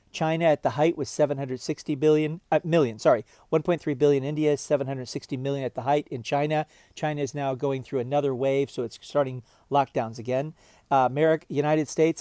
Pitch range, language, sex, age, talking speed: 135-160 Hz, Vietnamese, male, 40-59, 175 wpm